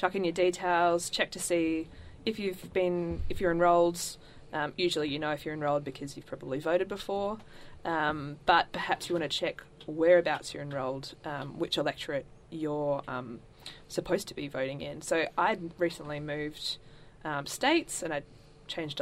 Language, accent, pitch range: English, Australian, 150-175 Hz